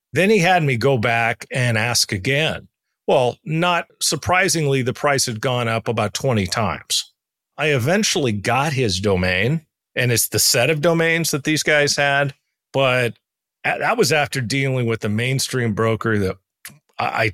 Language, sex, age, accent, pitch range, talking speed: English, male, 40-59, American, 115-170 Hz, 160 wpm